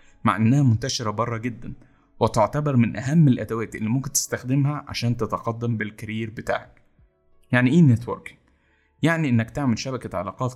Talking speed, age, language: 135 wpm, 20-39, Arabic